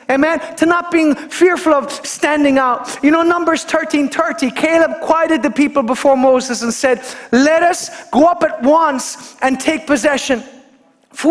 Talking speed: 165 wpm